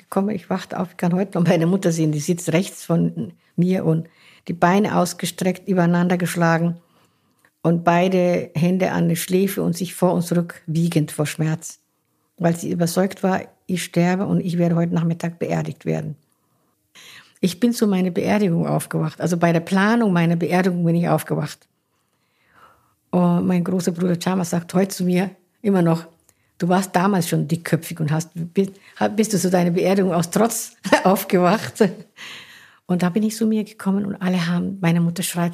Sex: female